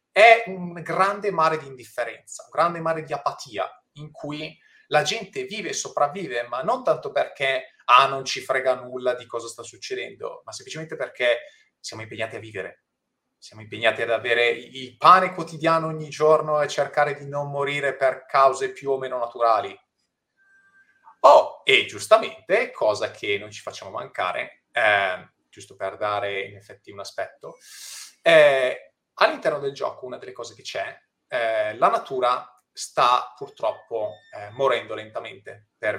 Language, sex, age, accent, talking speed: Italian, male, 30-49, native, 155 wpm